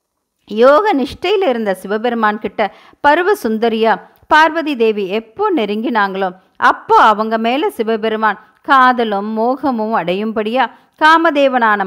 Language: Tamil